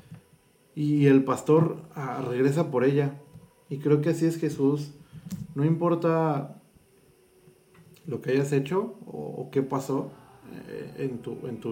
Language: Spanish